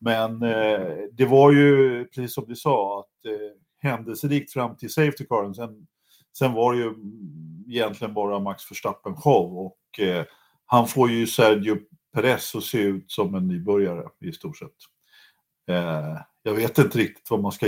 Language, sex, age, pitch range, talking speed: Swedish, male, 50-69, 100-140 Hz, 165 wpm